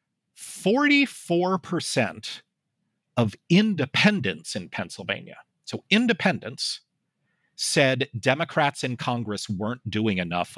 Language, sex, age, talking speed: English, male, 50-69, 80 wpm